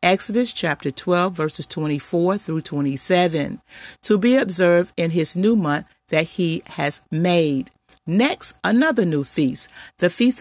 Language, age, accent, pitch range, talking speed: English, 40-59, American, 160-210 Hz, 140 wpm